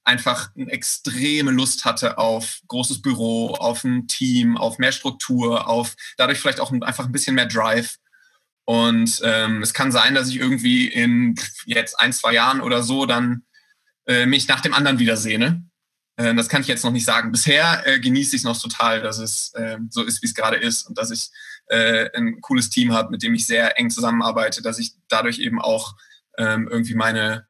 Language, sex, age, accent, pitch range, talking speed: German, male, 20-39, German, 115-135 Hz, 200 wpm